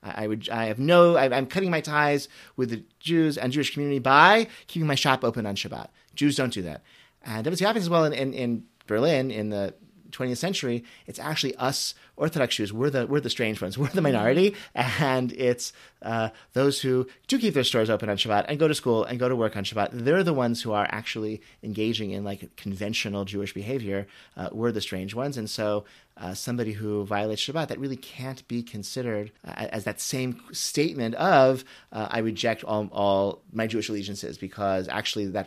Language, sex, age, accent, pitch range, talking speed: English, male, 30-49, American, 100-135 Hz, 205 wpm